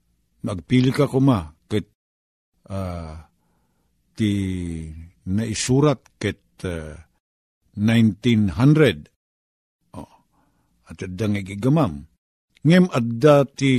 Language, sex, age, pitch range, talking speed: Filipino, male, 50-69, 90-135 Hz, 85 wpm